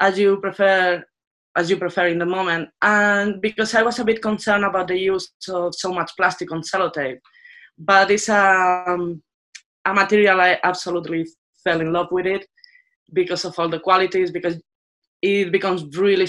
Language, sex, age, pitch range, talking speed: English, female, 20-39, 175-200 Hz, 170 wpm